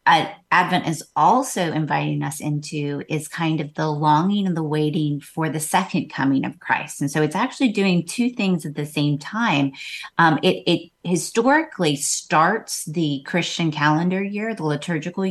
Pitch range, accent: 150-175 Hz, American